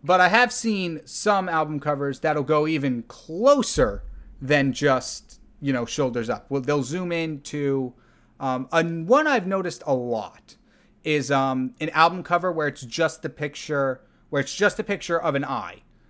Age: 30-49